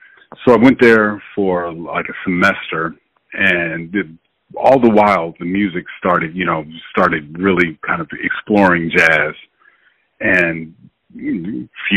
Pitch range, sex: 85-105 Hz, male